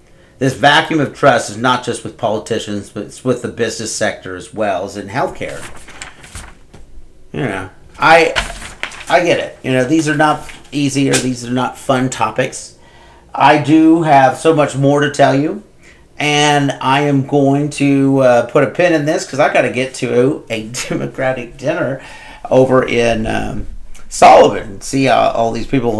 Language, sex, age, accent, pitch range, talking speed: English, male, 40-59, American, 110-145 Hz, 180 wpm